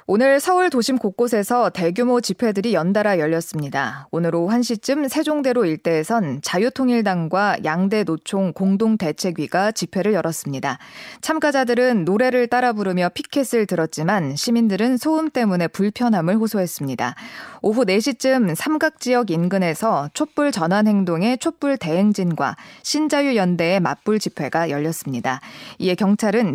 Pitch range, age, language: 175-245 Hz, 20-39, Korean